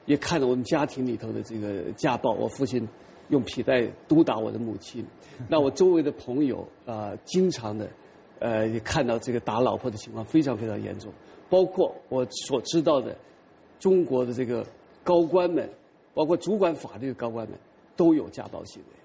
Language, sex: English, male